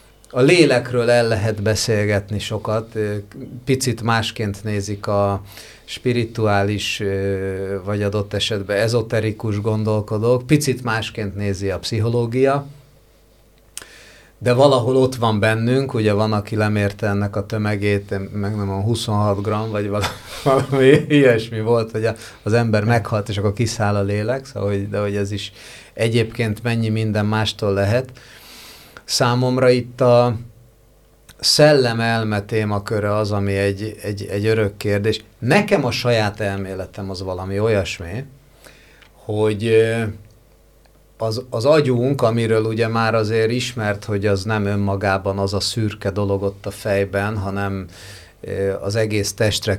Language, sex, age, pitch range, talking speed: Hungarian, male, 30-49, 100-115 Hz, 125 wpm